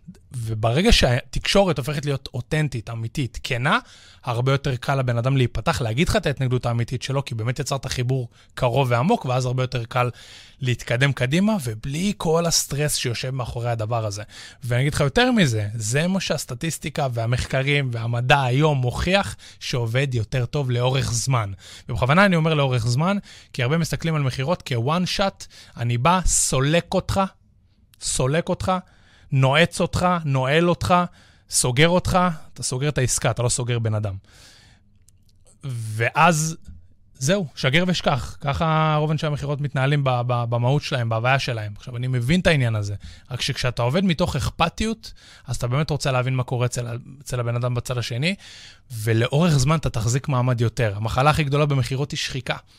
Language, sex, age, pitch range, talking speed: Hebrew, male, 20-39, 120-155 Hz, 155 wpm